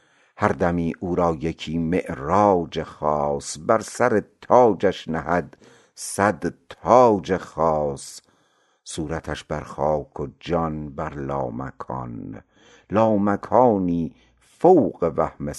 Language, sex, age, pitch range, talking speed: Persian, male, 60-79, 70-85 Hz, 90 wpm